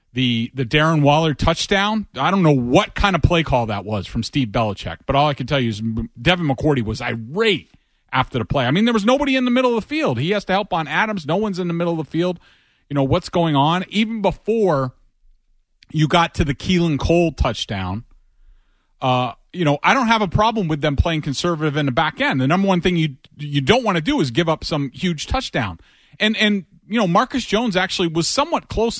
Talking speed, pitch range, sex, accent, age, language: 235 wpm, 130-190 Hz, male, American, 30-49, English